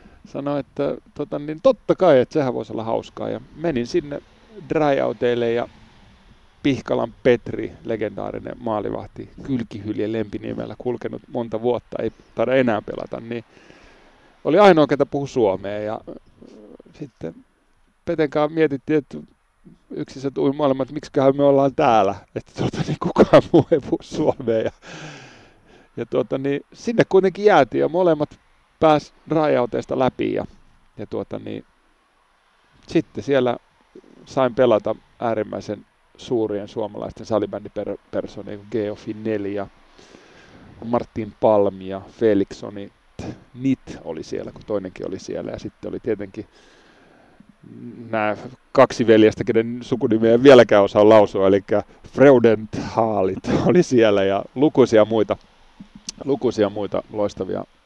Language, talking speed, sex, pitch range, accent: Finnish, 120 wpm, male, 105-140 Hz, native